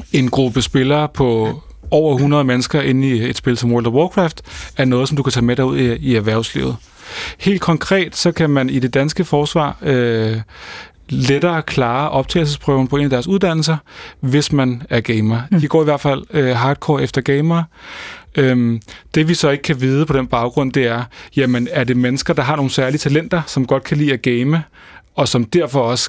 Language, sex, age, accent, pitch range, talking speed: Danish, male, 30-49, native, 120-150 Hz, 200 wpm